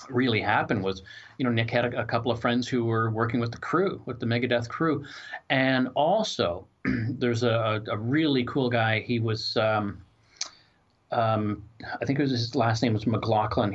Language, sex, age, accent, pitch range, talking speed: English, male, 40-59, American, 110-125 Hz, 185 wpm